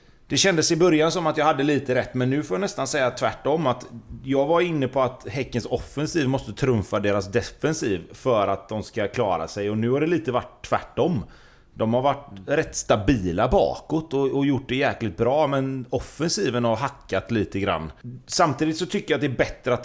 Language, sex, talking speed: Swedish, male, 205 wpm